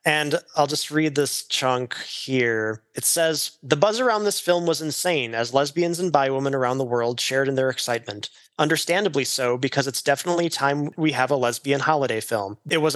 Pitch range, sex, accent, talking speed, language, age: 130-160 Hz, male, American, 195 wpm, English, 20-39